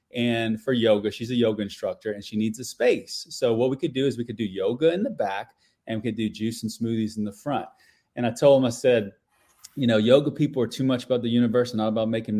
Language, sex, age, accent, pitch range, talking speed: English, male, 30-49, American, 110-140 Hz, 265 wpm